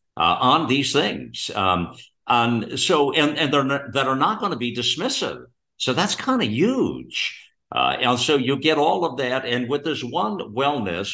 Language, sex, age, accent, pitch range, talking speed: English, male, 60-79, American, 100-130 Hz, 195 wpm